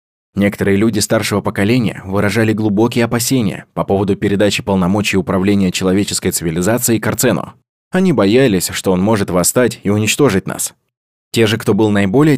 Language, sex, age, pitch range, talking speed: Russian, male, 20-39, 95-120 Hz, 140 wpm